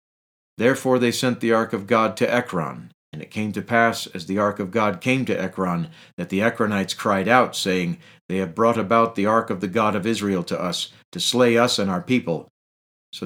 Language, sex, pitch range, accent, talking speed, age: English, male, 95-120 Hz, American, 215 wpm, 50-69